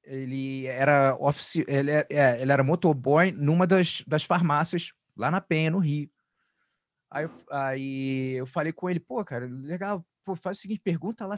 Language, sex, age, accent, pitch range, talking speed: English, male, 30-49, Brazilian, 135-170 Hz, 155 wpm